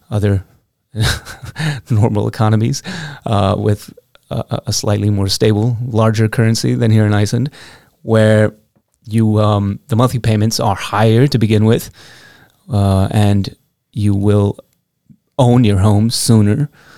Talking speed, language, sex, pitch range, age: 125 wpm, English, male, 105-115 Hz, 30-49